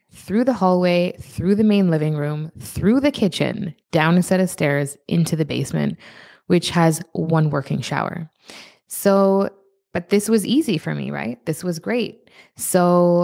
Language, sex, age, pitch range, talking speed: English, female, 20-39, 160-200 Hz, 165 wpm